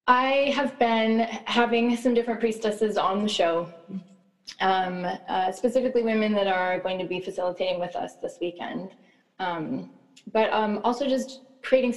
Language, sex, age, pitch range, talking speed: English, female, 20-39, 175-225 Hz, 150 wpm